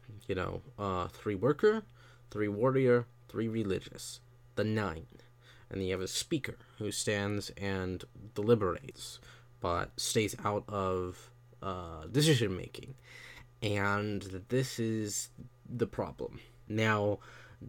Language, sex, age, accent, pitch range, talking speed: English, male, 20-39, American, 100-120 Hz, 115 wpm